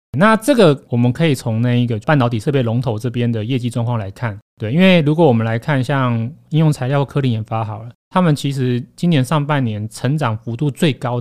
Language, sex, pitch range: Chinese, male, 115-145 Hz